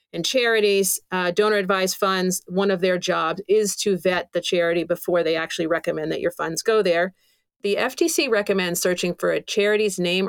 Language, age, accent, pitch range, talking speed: English, 40-59, American, 180-215 Hz, 185 wpm